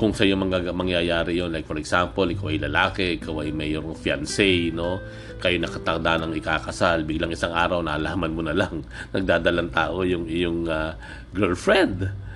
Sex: male